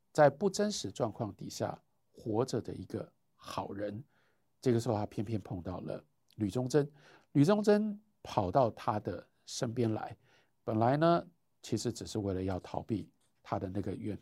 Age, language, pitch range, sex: 50-69, Chinese, 100-145 Hz, male